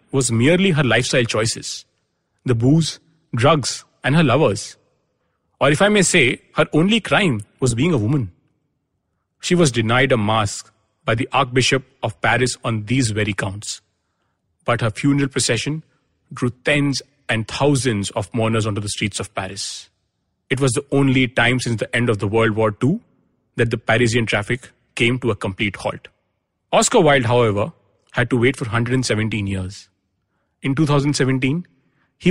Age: 30-49